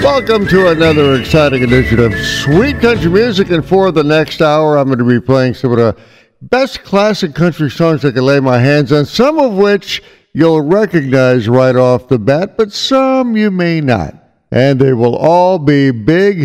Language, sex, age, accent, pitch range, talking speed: English, male, 60-79, American, 130-180 Hz, 190 wpm